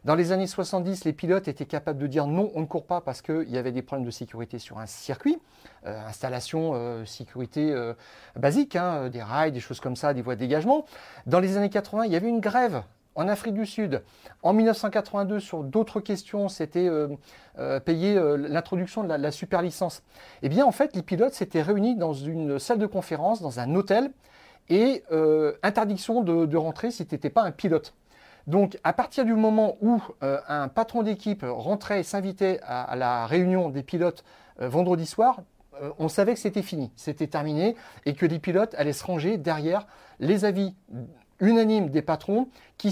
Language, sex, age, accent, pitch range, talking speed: French, male, 40-59, French, 145-200 Hz, 200 wpm